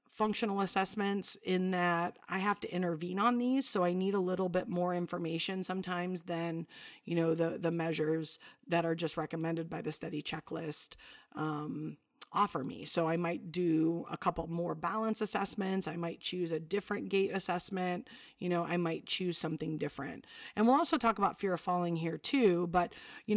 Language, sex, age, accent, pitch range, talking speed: English, female, 40-59, American, 170-210 Hz, 180 wpm